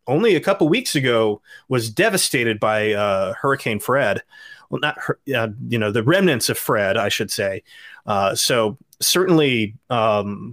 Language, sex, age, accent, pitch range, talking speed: English, male, 30-49, American, 110-145 Hz, 160 wpm